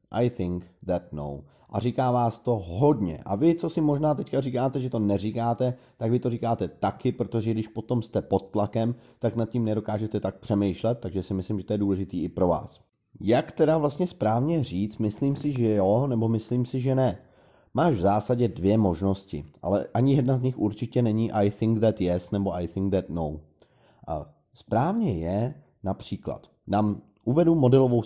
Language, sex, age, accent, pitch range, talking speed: Czech, male, 30-49, native, 100-130 Hz, 185 wpm